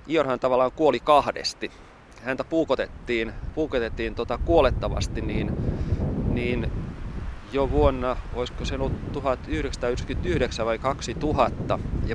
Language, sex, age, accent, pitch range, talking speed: Finnish, male, 30-49, native, 110-145 Hz, 100 wpm